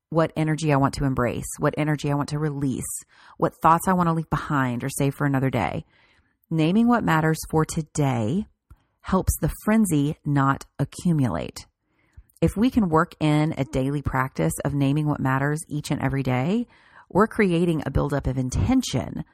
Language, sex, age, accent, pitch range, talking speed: English, female, 40-59, American, 135-185 Hz, 175 wpm